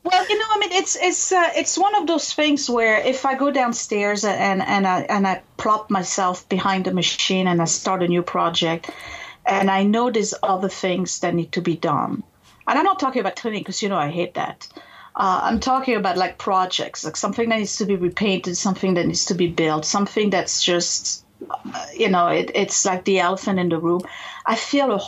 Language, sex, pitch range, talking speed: English, female, 185-255 Hz, 220 wpm